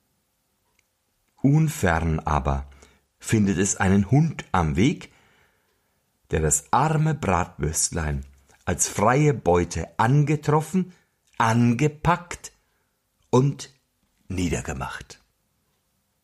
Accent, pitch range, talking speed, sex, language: German, 85-120 Hz, 70 wpm, male, German